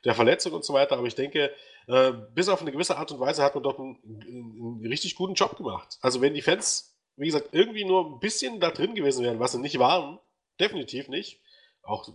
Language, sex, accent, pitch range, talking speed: German, male, German, 120-155 Hz, 230 wpm